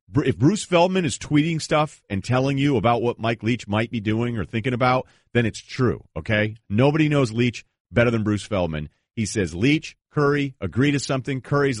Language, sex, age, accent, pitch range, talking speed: English, male, 40-59, American, 105-140 Hz, 195 wpm